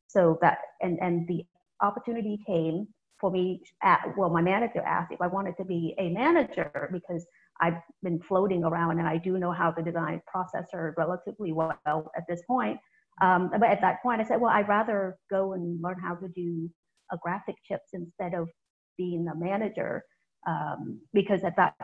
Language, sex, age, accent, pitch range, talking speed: English, female, 30-49, American, 170-200 Hz, 185 wpm